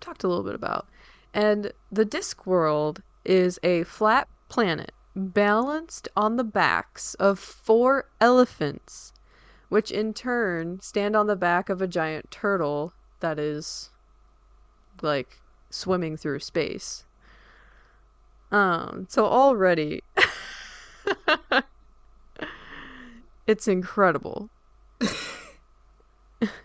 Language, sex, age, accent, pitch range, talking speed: English, female, 20-39, American, 175-215 Hz, 90 wpm